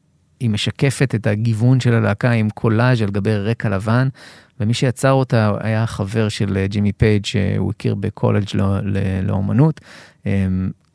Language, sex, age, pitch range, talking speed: Hebrew, male, 30-49, 100-125 Hz, 140 wpm